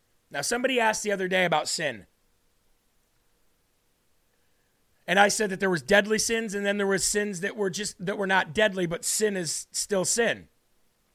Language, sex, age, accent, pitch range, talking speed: English, male, 40-59, American, 180-215 Hz, 180 wpm